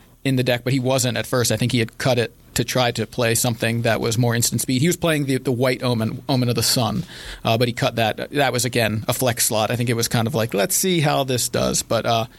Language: English